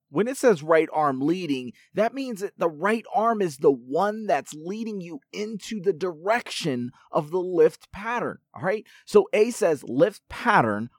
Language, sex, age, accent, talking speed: English, male, 30-49, American, 175 wpm